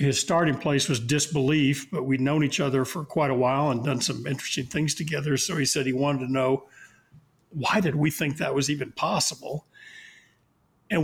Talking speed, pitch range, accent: 195 wpm, 135-160 Hz, American